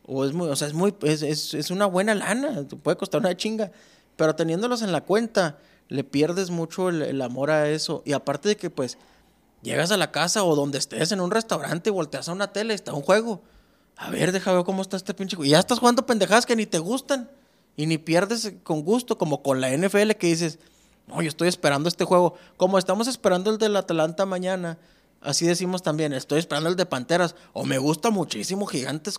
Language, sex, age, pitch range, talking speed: Spanish, male, 20-39, 145-190 Hz, 220 wpm